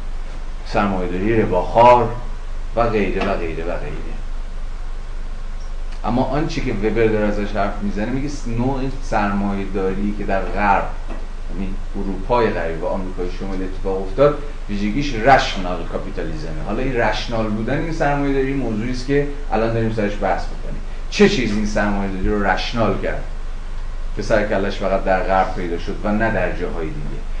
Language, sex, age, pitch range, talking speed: Persian, male, 30-49, 95-120 Hz, 140 wpm